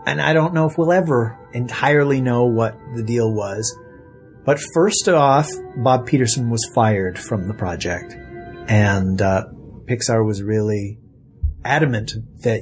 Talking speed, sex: 145 wpm, male